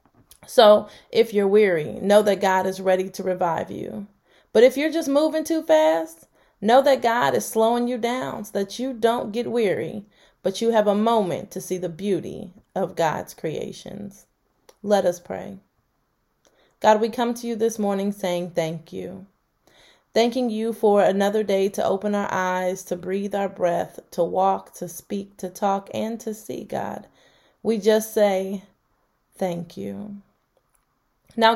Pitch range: 190-225 Hz